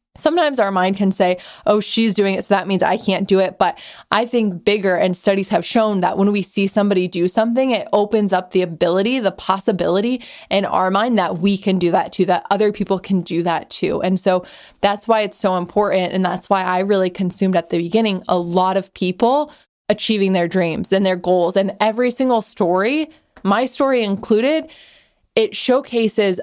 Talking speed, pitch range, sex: 200 wpm, 190-230 Hz, female